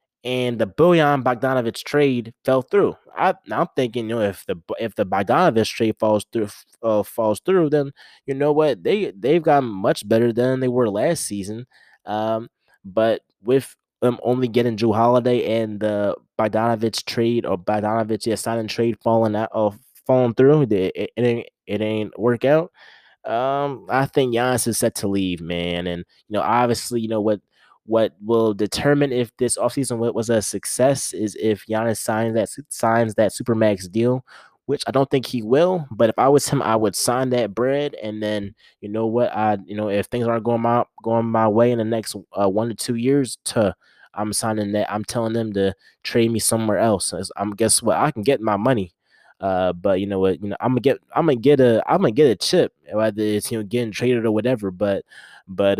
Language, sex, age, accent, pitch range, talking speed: English, male, 20-39, American, 105-125 Hz, 205 wpm